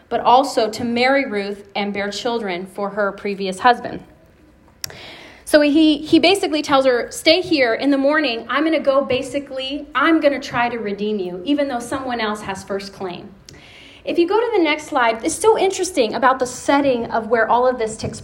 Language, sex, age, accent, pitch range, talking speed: English, female, 30-49, American, 220-290 Hz, 200 wpm